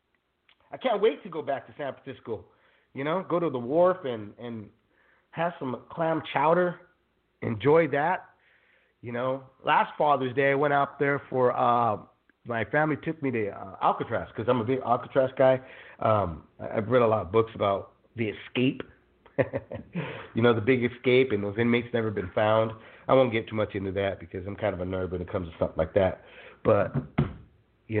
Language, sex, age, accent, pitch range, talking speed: English, male, 30-49, American, 110-165 Hz, 195 wpm